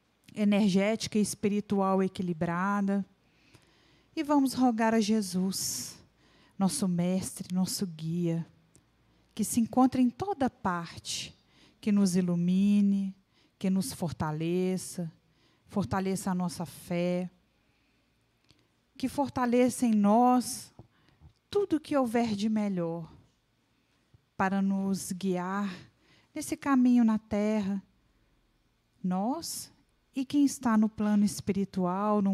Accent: Brazilian